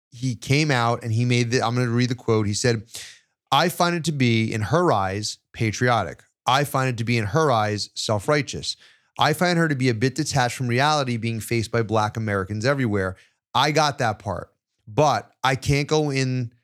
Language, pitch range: English, 110-145 Hz